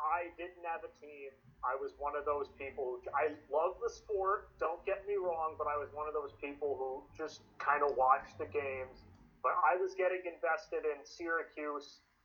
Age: 30-49